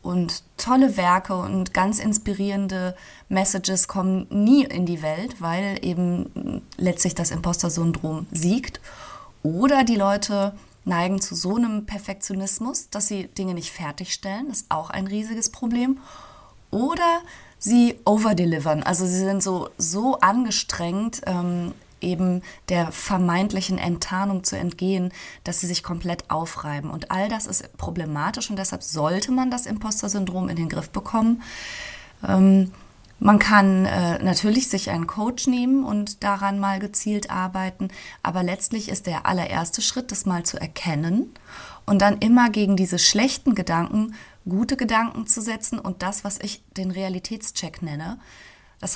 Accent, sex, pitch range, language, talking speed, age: German, female, 180-215 Hz, German, 145 wpm, 20-39